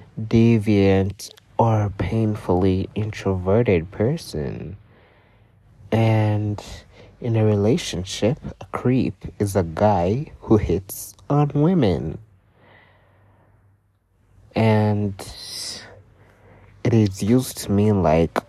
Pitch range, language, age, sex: 95-110 Hz, English, 30-49, male